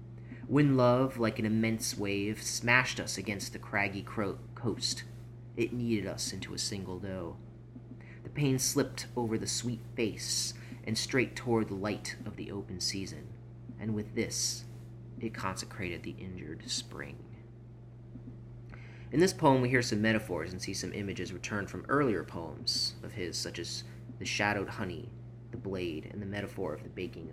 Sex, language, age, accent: male, English, 30-49, American